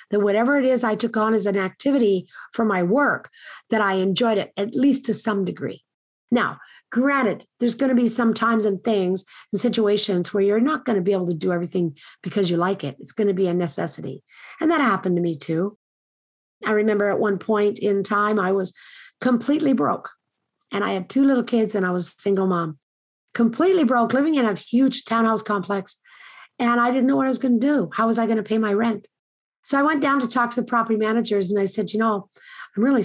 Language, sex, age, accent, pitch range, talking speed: English, female, 50-69, American, 195-250 Hz, 230 wpm